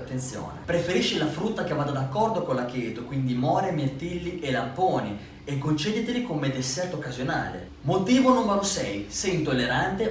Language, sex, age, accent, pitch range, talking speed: Italian, male, 20-39, native, 135-190 Hz, 155 wpm